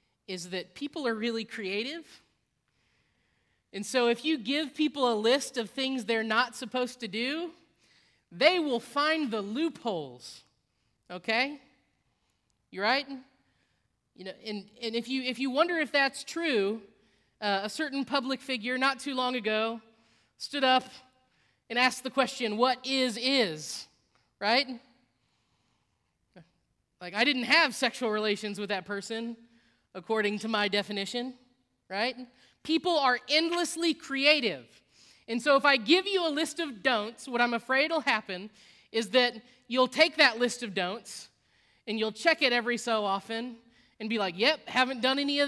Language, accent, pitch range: English, American, 205-270 Hz